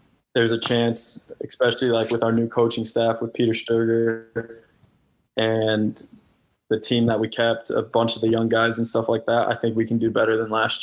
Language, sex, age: English, male, 20-39